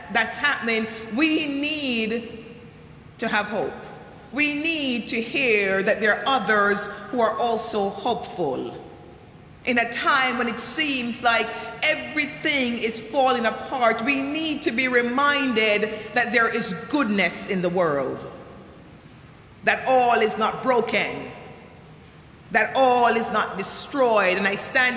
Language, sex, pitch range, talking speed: English, female, 225-270 Hz, 130 wpm